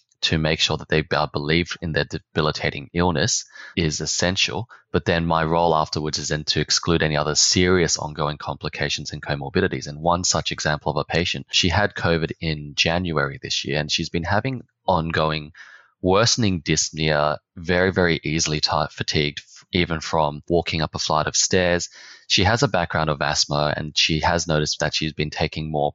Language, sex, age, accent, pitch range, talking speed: English, male, 20-39, Australian, 75-85 Hz, 175 wpm